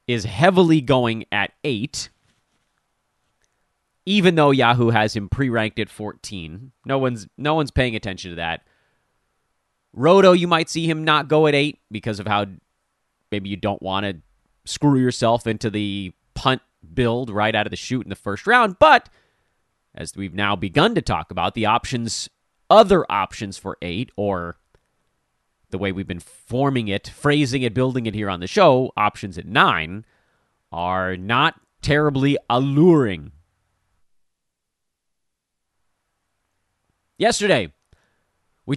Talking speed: 140 wpm